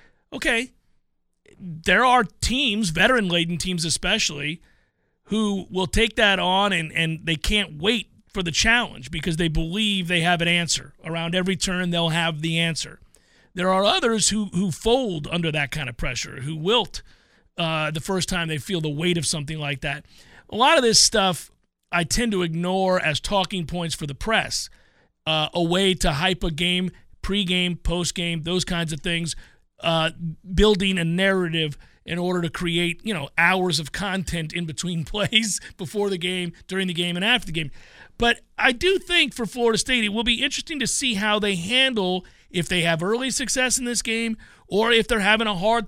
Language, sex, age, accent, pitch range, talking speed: English, male, 40-59, American, 170-215 Hz, 190 wpm